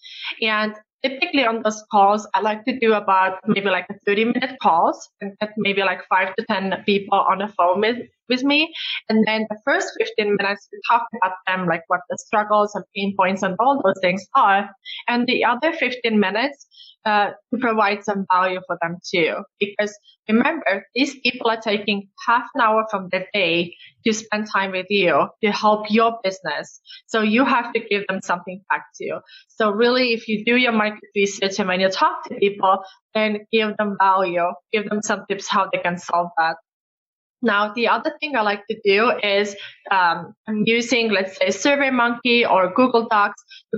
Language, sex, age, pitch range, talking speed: English, female, 20-39, 195-235 Hz, 195 wpm